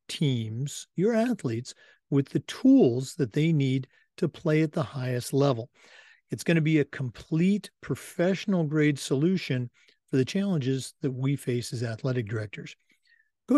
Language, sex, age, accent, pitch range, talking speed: English, male, 50-69, American, 130-175 Hz, 150 wpm